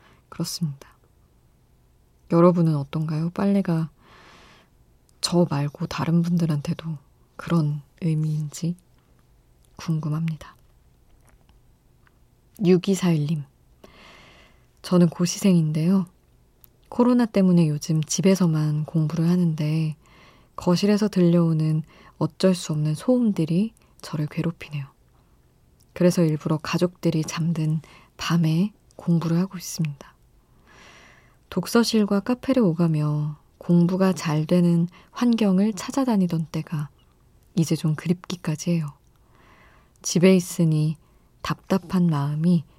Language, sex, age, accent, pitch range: Korean, female, 20-39, native, 150-180 Hz